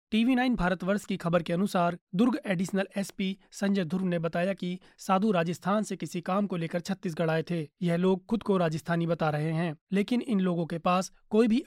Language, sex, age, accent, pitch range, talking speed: Hindi, male, 30-49, native, 170-200 Hz, 205 wpm